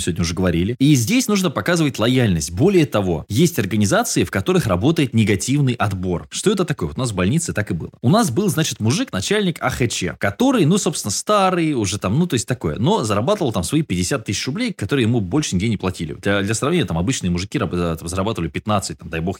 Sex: male